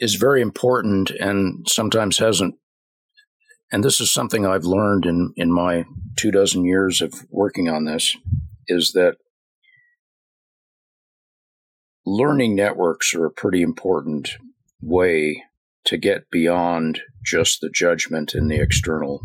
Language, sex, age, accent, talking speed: English, male, 50-69, American, 125 wpm